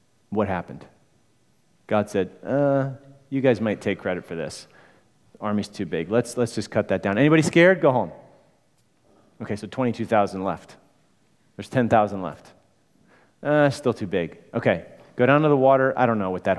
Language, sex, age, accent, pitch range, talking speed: English, male, 30-49, American, 110-145 Hz, 175 wpm